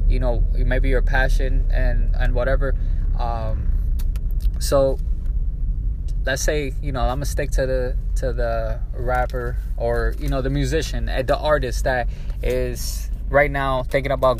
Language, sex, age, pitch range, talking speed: English, male, 20-39, 110-140 Hz, 140 wpm